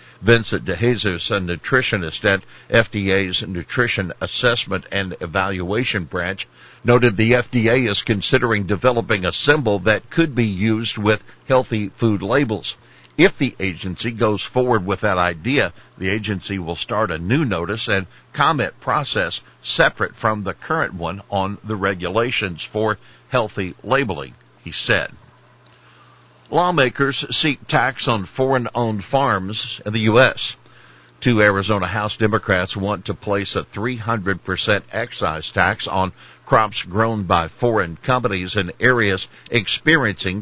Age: 60-79